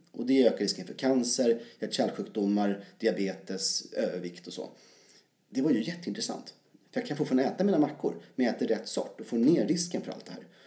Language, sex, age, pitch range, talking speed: Swedish, male, 30-49, 115-150 Hz, 200 wpm